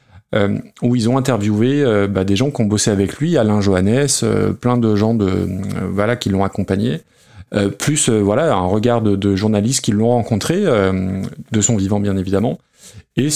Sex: male